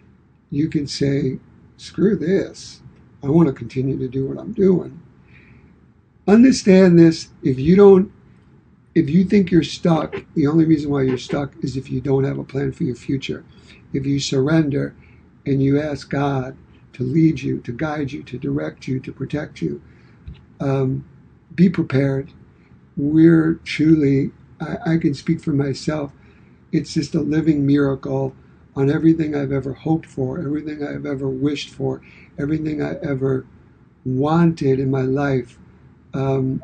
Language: English